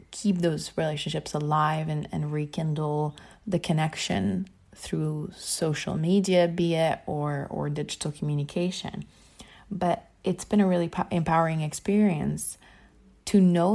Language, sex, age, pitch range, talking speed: English, female, 20-39, 155-185 Hz, 120 wpm